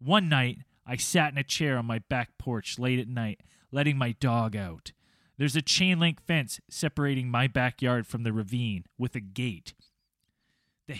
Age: 20-39